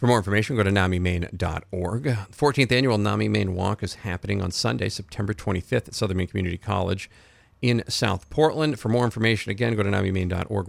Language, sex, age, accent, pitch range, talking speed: English, male, 40-59, American, 95-115 Hz, 180 wpm